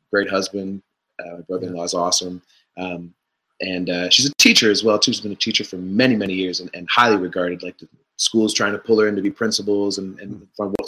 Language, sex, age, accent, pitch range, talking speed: English, male, 30-49, American, 95-110 Hz, 230 wpm